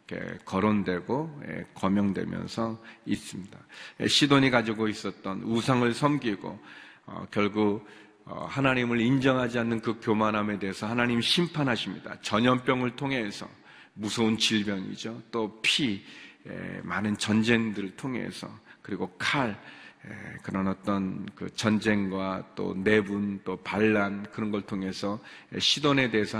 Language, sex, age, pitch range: Korean, male, 40-59, 100-120 Hz